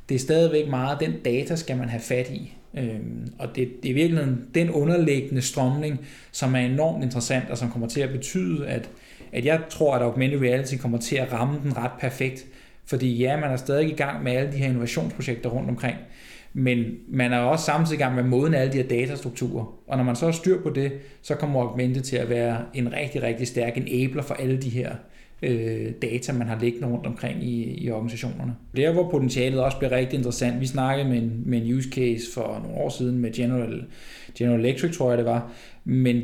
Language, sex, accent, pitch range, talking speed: Danish, male, native, 125-150 Hz, 215 wpm